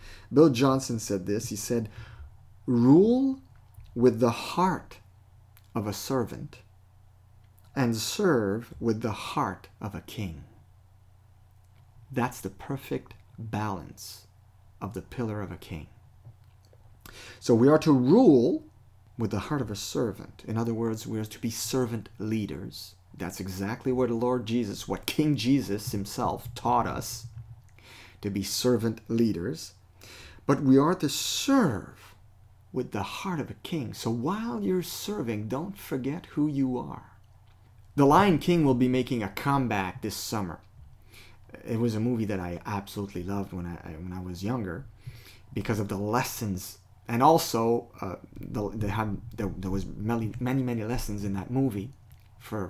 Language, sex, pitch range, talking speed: English, male, 100-125 Hz, 150 wpm